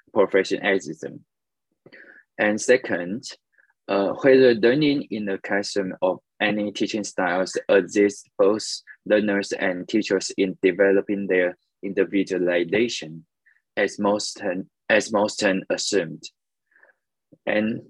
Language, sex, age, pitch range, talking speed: English, male, 20-39, 100-115 Hz, 95 wpm